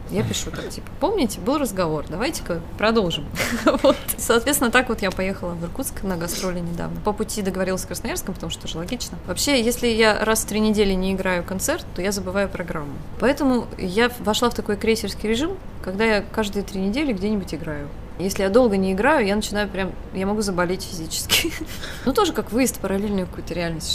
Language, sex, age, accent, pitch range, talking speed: Russian, female, 20-39, native, 185-230 Hz, 195 wpm